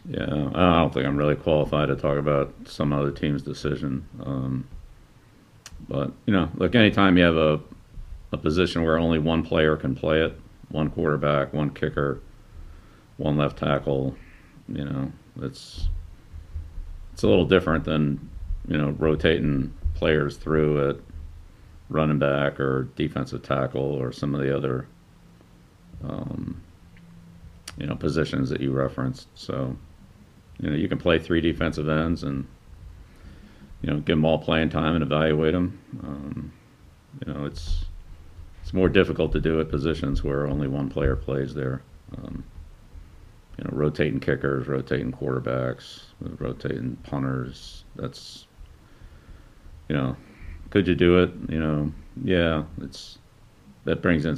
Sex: male